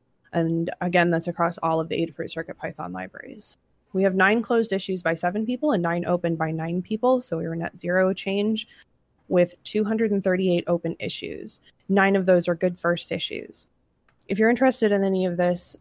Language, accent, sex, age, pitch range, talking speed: English, American, female, 20-39, 170-195 Hz, 180 wpm